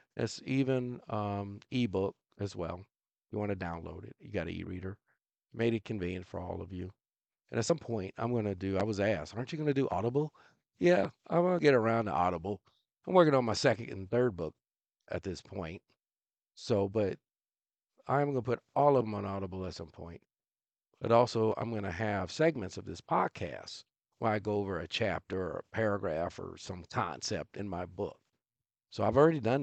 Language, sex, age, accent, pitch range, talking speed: English, male, 50-69, American, 95-125 Hz, 205 wpm